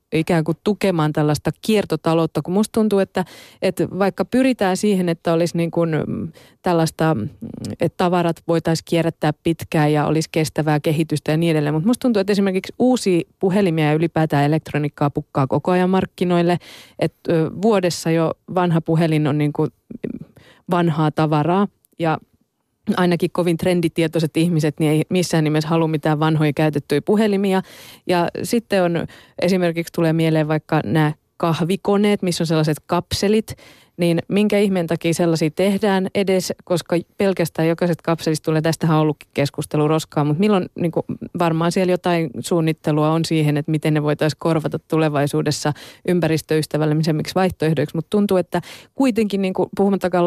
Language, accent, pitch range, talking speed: Finnish, native, 155-180 Hz, 145 wpm